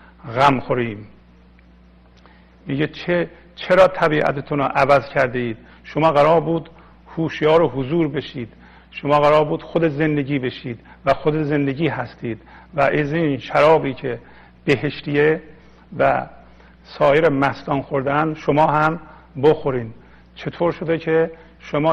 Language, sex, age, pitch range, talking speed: Persian, male, 50-69, 120-150 Hz, 115 wpm